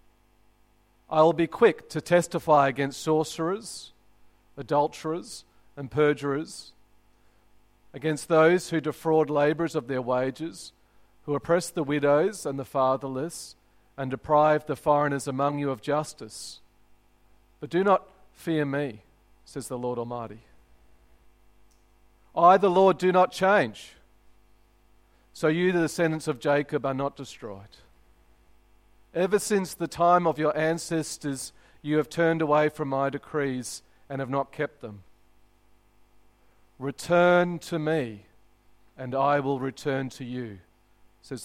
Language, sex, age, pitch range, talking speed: English, male, 40-59, 110-155 Hz, 125 wpm